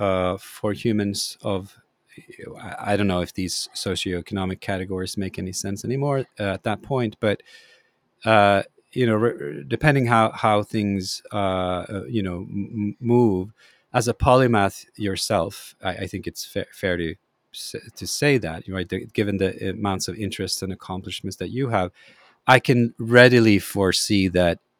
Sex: male